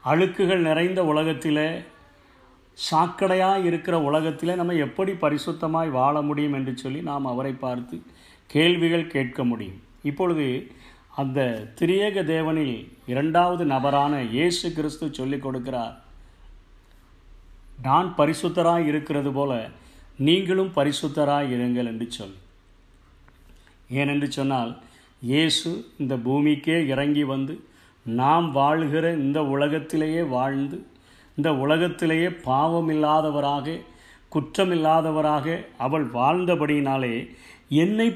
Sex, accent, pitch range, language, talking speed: male, native, 135-170 Hz, Tamil, 90 wpm